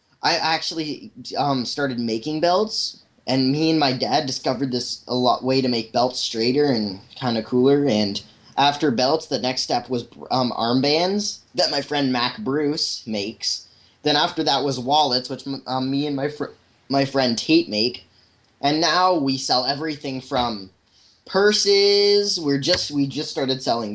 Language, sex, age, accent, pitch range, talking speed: English, male, 10-29, American, 110-140 Hz, 170 wpm